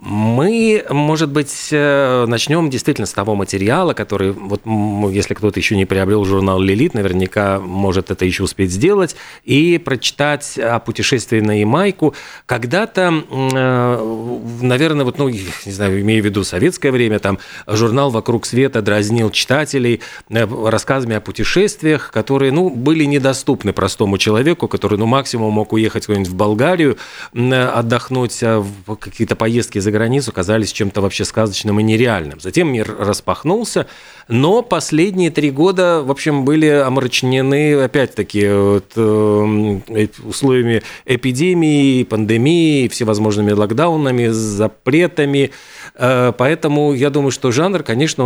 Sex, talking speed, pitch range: male, 125 wpm, 105-140 Hz